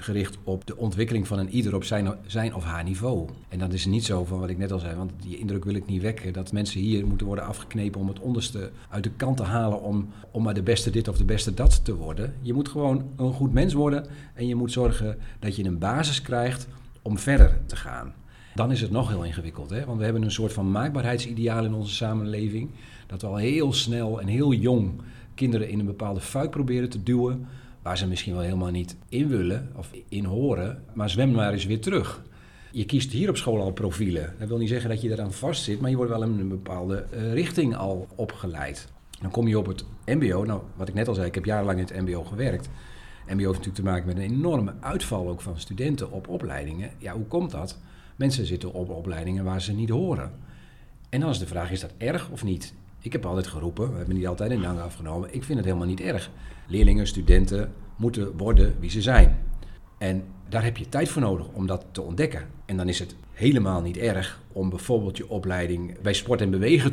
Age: 40-59